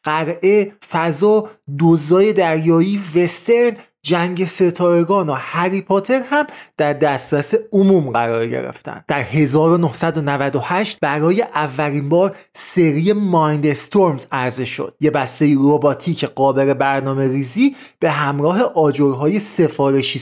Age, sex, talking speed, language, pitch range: 30-49, male, 105 wpm, Persian, 145-190 Hz